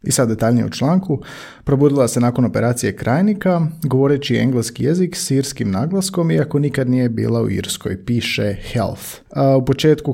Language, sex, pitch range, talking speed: Croatian, male, 110-145 Hz, 155 wpm